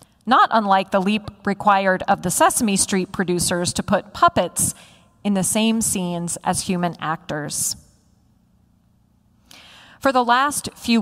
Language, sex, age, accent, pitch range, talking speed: English, female, 30-49, American, 185-240 Hz, 130 wpm